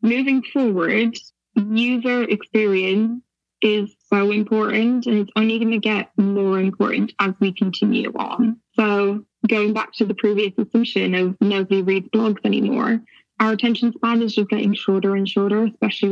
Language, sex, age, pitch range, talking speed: English, female, 10-29, 200-225 Hz, 155 wpm